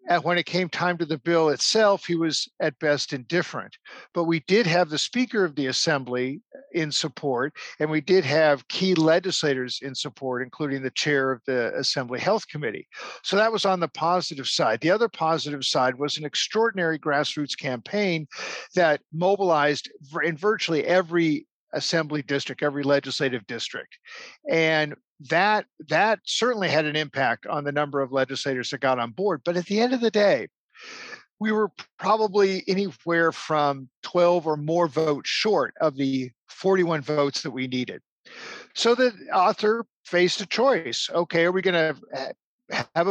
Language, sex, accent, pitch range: English, male, American, 145-190 Hz